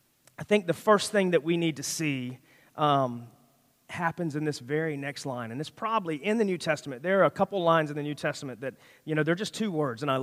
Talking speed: 245 wpm